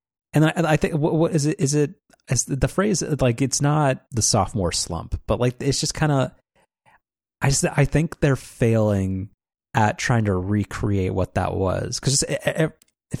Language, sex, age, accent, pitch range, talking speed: English, male, 30-49, American, 100-130 Hz, 180 wpm